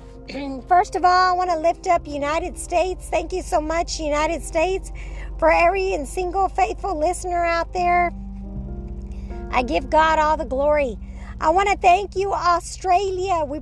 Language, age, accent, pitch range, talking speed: English, 50-69, American, 310-375 Hz, 160 wpm